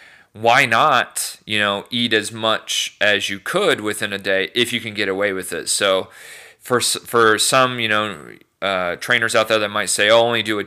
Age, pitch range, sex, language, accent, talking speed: 40-59, 100-115 Hz, male, English, American, 215 wpm